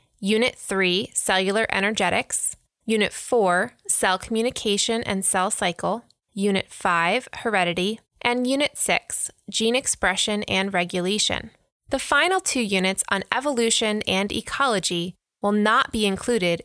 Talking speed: 120 wpm